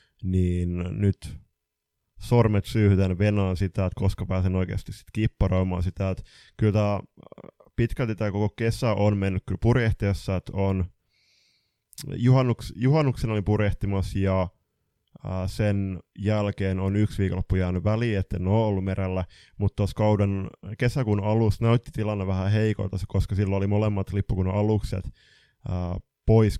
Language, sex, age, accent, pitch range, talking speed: Finnish, male, 20-39, native, 95-110 Hz, 125 wpm